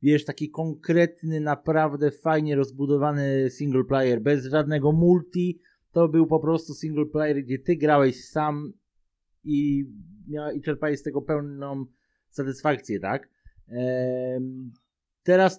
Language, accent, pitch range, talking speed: Polish, native, 135-165 Hz, 115 wpm